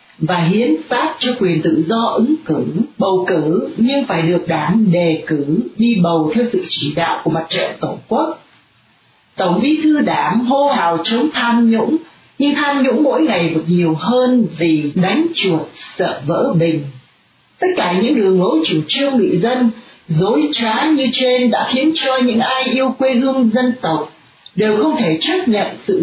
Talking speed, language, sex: 185 wpm, Vietnamese, female